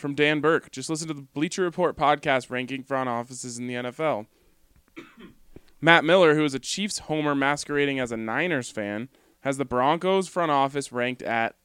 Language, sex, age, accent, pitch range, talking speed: English, male, 20-39, American, 115-145 Hz, 180 wpm